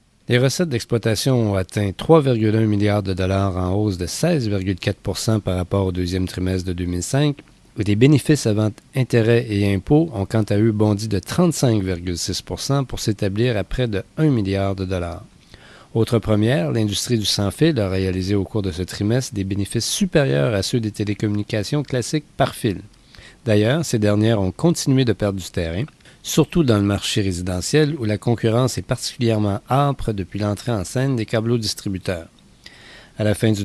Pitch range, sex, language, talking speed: 95-120 Hz, male, French, 175 wpm